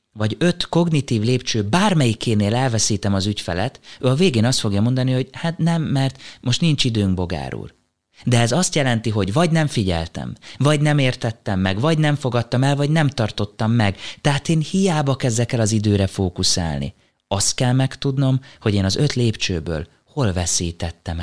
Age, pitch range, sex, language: 30-49, 95-130 Hz, male, Hungarian